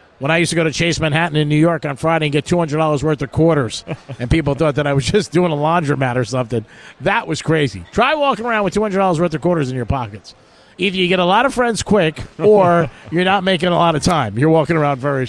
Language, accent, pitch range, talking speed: English, American, 135-175 Hz, 255 wpm